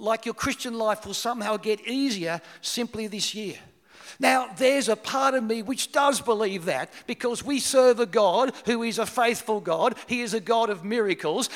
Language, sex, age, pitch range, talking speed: English, male, 50-69, 150-230 Hz, 190 wpm